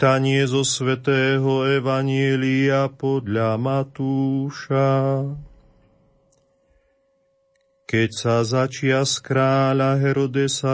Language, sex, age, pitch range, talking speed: Slovak, male, 40-59, 115-135 Hz, 65 wpm